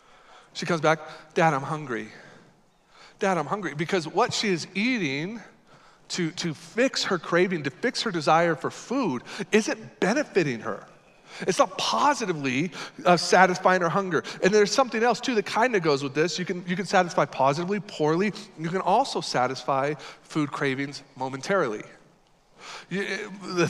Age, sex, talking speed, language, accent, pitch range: 40-59, male, 150 wpm, English, American, 150-205 Hz